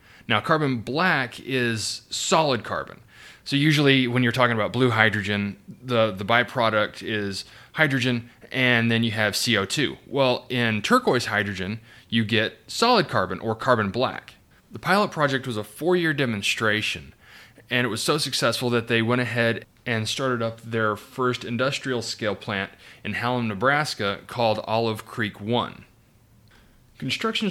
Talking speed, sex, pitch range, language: 145 wpm, male, 110-135 Hz, English